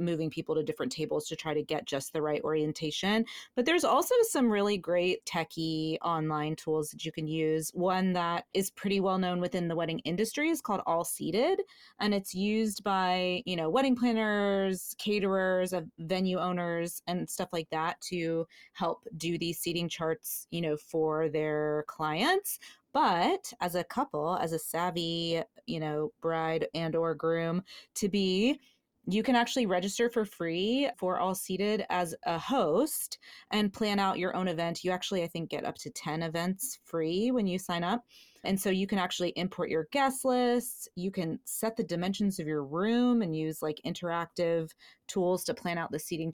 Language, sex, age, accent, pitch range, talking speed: English, female, 30-49, American, 165-200 Hz, 180 wpm